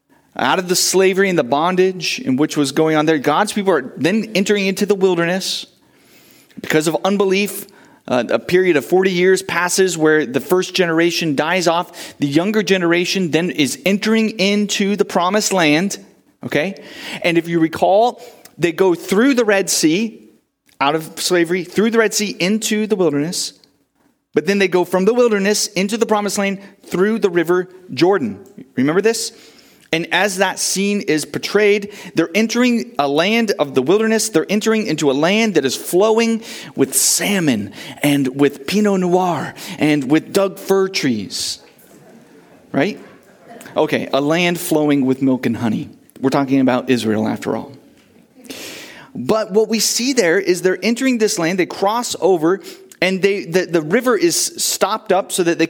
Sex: male